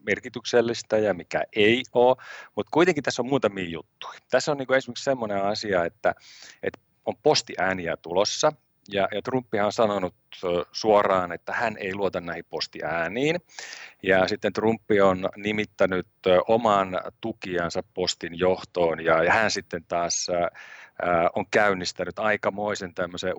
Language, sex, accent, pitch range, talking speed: Finnish, male, native, 90-115 Hz, 135 wpm